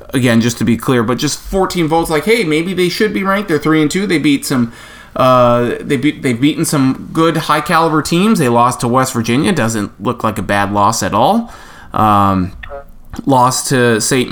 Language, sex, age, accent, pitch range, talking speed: English, male, 20-39, American, 125-175 Hz, 205 wpm